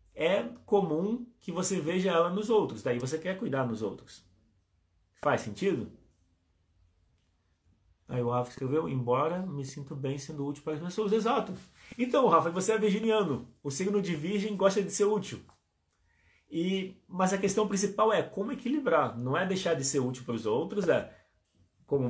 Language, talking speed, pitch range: Portuguese, 170 wpm, 125-195 Hz